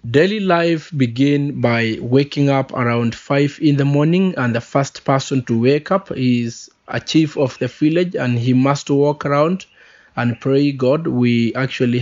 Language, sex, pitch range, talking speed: English, male, 125-145 Hz, 170 wpm